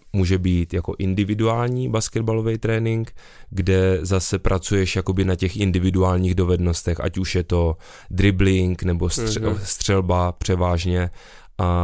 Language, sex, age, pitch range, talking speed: Czech, male, 20-39, 85-95 Hz, 115 wpm